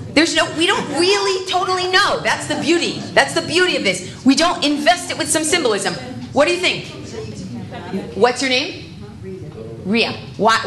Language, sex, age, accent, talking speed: English, female, 30-49, American, 175 wpm